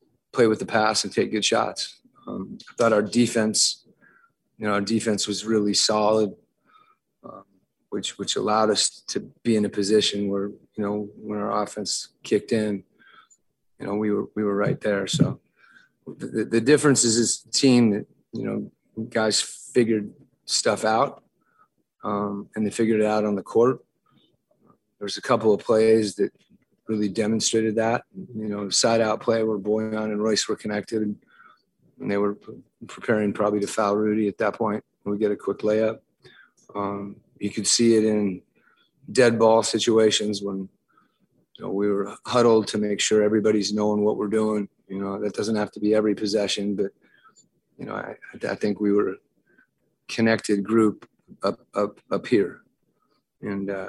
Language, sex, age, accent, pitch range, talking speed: English, male, 30-49, American, 100-110 Hz, 165 wpm